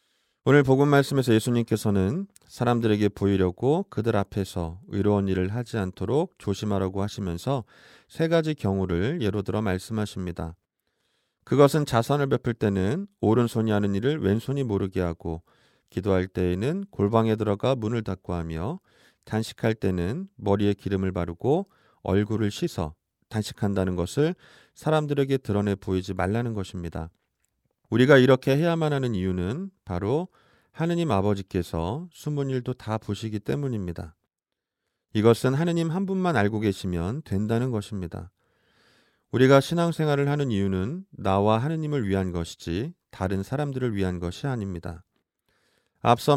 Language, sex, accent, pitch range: Korean, male, native, 95-135 Hz